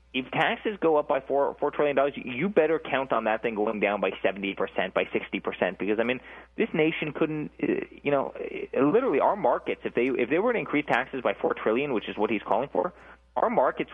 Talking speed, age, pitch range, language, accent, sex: 230 wpm, 20-39, 100-135 Hz, English, American, male